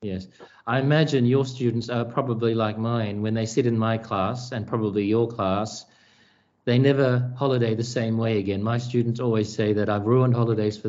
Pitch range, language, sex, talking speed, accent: 105-125 Hz, English, male, 195 wpm, Australian